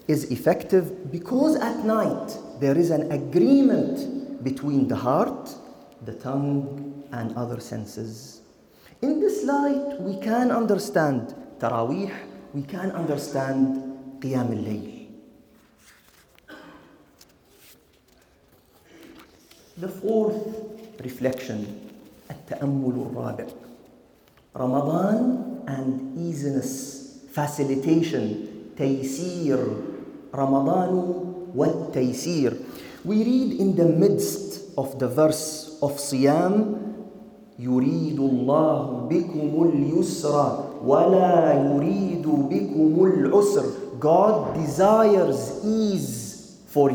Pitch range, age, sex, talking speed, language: 135-200 Hz, 40-59, male, 85 wpm, English